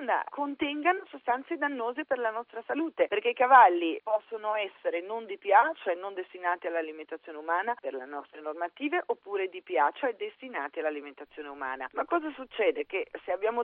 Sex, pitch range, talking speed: female, 165-265 Hz, 165 wpm